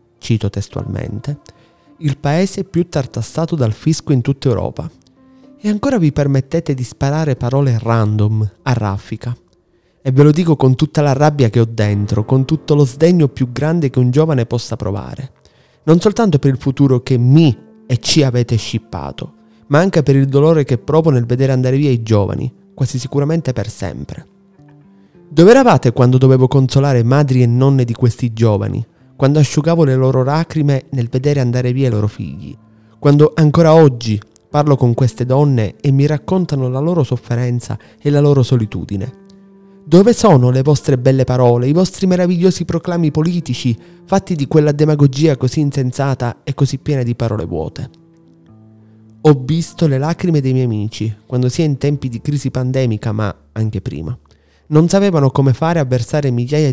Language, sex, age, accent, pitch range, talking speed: Italian, male, 30-49, native, 120-155 Hz, 165 wpm